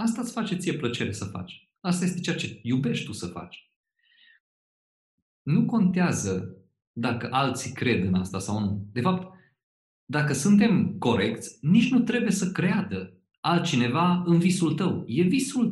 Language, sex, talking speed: Romanian, male, 155 wpm